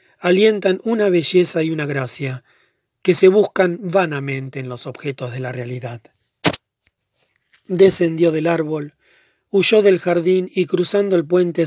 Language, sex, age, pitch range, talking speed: English, male, 40-59, 140-185 Hz, 135 wpm